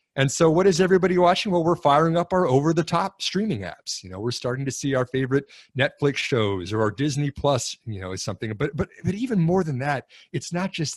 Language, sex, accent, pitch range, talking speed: English, male, American, 105-145 Hz, 230 wpm